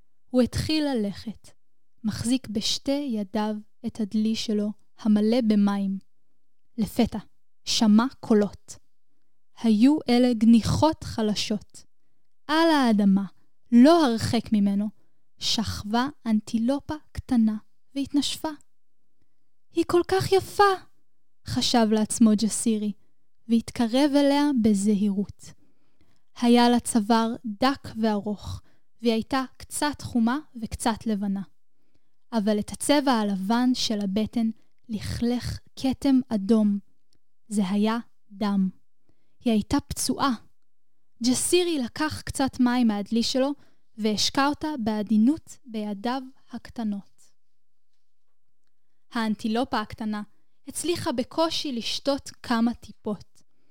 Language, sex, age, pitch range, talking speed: Hebrew, female, 10-29, 215-265 Hz, 90 wpm